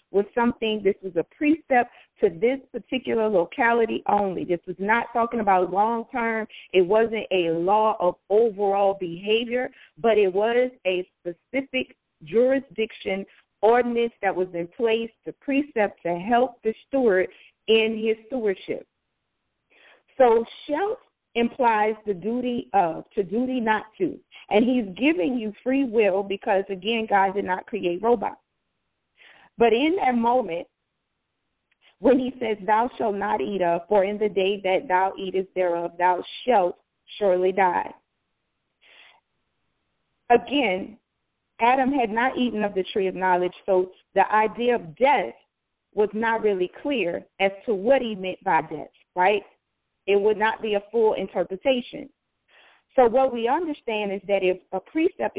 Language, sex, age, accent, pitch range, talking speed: English, female, 40-59, American, 190-240 Hz, 145 wpm